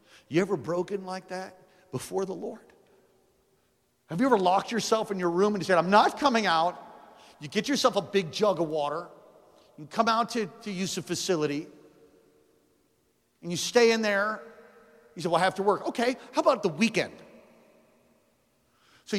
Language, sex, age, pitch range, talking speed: English, male, 50-69, 200-310 Hz, 175 wpm